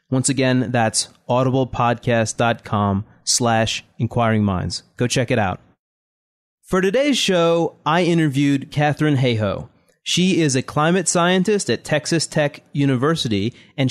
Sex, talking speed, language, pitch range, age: male, 115 wpm, English, 120-155 Hz, 30-49